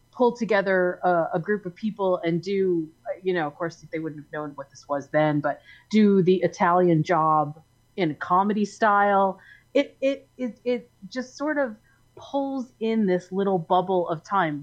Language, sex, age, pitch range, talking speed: English, female, 30-49, 175-225 Hz, 180 wpm